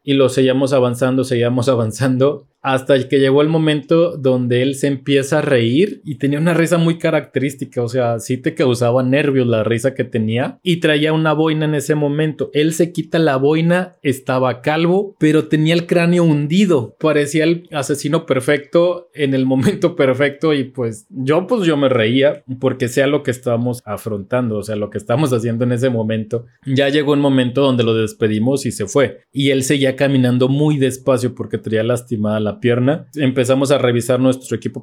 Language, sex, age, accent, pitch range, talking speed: Spanish, male, 30-49, Mexican, 125-150 Hz, 185 wpm